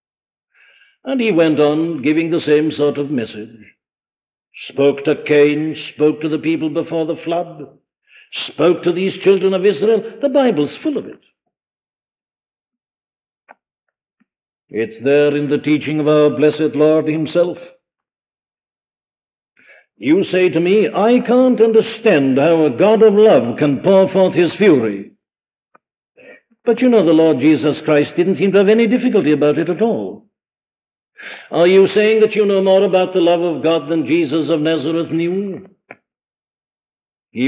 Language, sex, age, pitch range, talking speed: English, male, 60-79, 150-200 Hz, 150 wpm